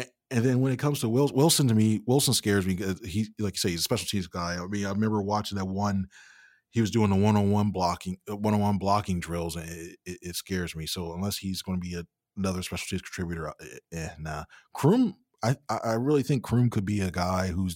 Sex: male